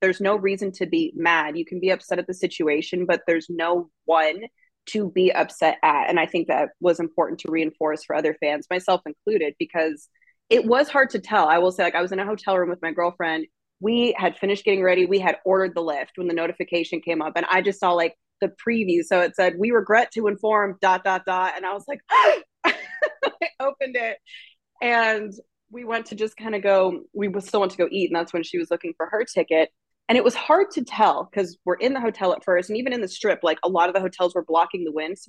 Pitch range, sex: 175-215 Hz, female